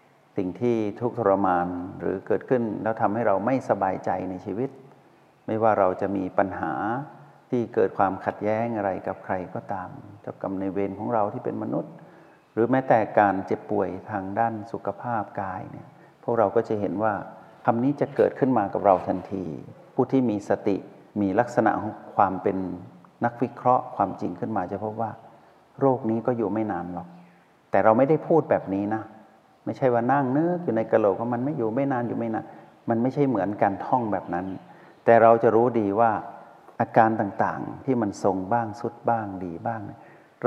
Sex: male